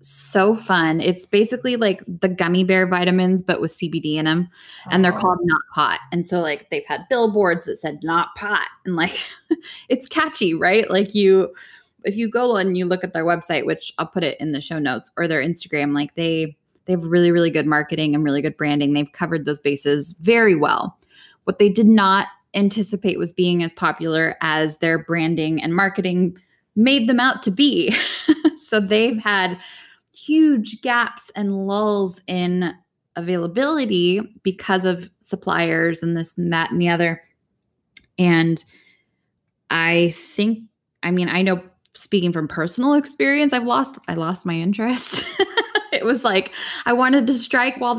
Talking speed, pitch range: 170 wpm, 170-230 Hz